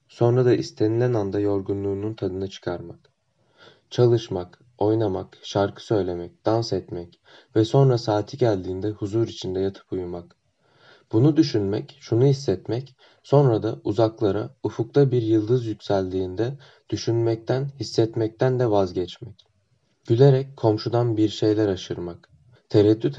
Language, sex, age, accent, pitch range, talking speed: Turkish, male, 20-39, native, 100-125 Hz, 110 wpm